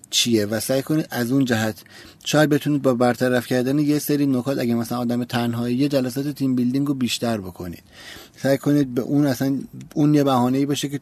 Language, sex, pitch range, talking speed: Persian, male, 110-135 Hz, 190 wpm